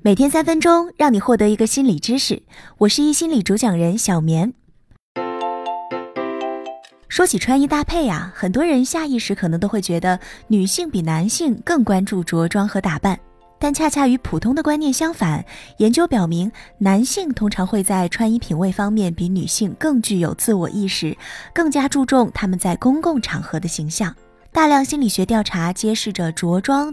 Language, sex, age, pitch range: Chinese, female, 20-39, 185-280 Hz